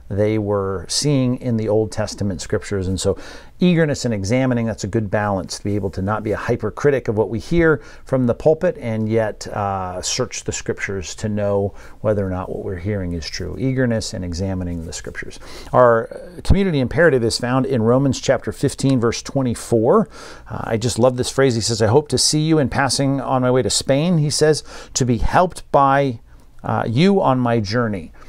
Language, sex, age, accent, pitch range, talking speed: English, male, 50-69, American, 100-130 Hz, 200 wpm